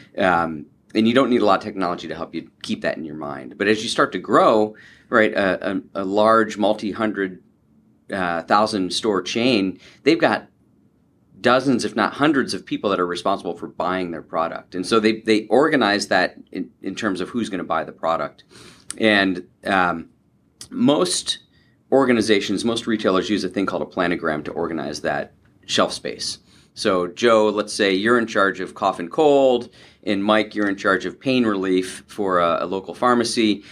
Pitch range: 90-110 Hz